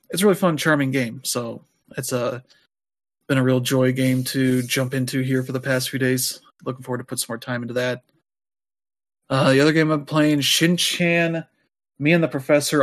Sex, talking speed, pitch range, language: male, 200 wpm, 130-145 Hz, English